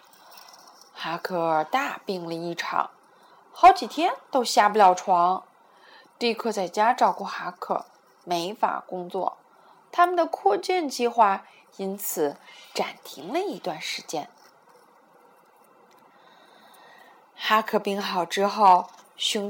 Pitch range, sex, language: 195-315 Hz, female, Chinese